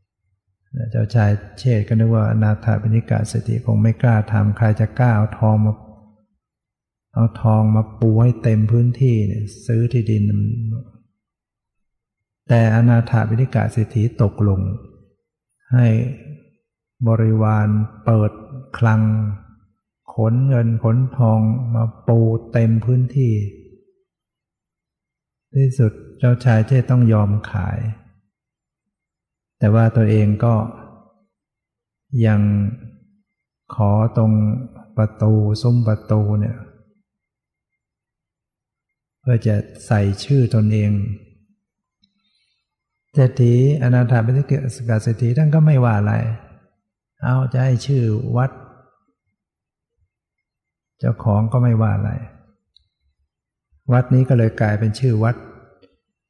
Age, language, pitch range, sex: 60-79, English, 105-120 Hz, male